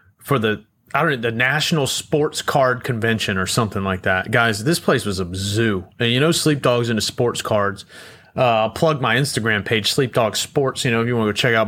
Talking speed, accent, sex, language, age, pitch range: 235 wpm, American, male, English, 30-49, 105-140 Hz